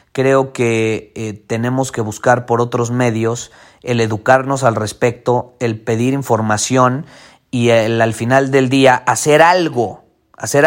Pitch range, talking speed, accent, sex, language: 120-150 Hz, 140 wpm, Mexican, male, Spanish